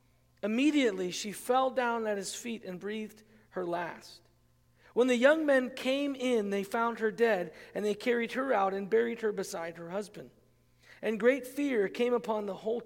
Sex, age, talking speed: male, 40-59, 180 wpm